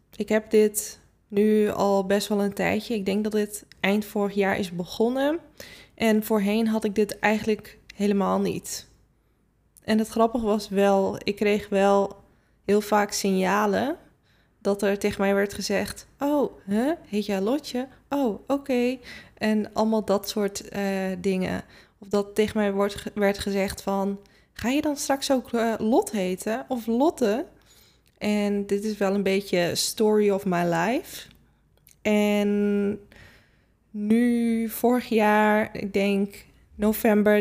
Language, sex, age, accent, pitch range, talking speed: Dutch, female, 20-39, Dutch, 200-220 Hz, 145 wpm